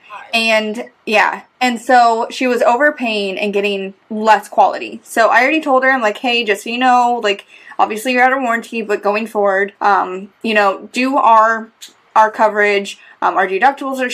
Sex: female